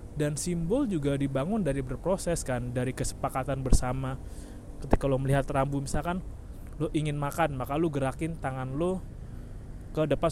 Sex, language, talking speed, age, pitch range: male, Indonesian, 145 wpm, 20-39, 130-180 Hz